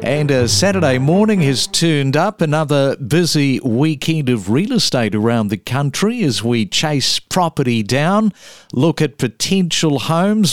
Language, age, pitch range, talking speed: English, 50-69, 125-160 Hz, 140 wpm